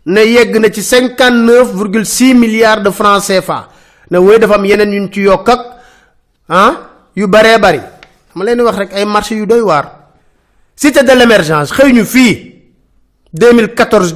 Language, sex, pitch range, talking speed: French, male, 180-235 Hz, 155 wpm